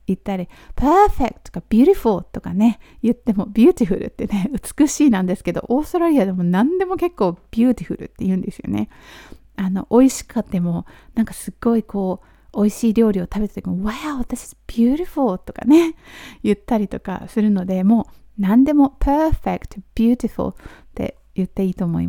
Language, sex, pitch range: Japanese, female, 200-255 Hz